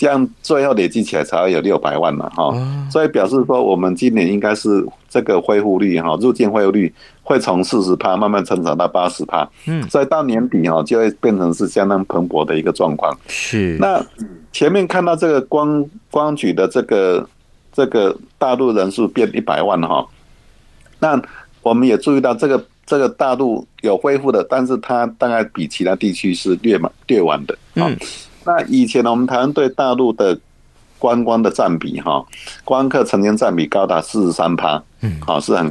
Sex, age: male, 50-69